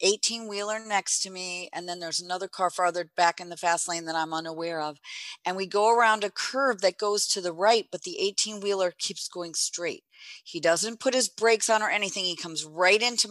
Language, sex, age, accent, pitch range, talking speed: English, female, 40-59, American, 180-235 Hz, 215 wpm